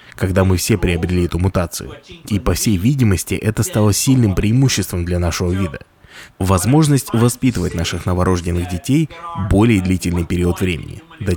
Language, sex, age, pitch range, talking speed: Russian, male, 20-39, 95-125 Hz, 145 wpm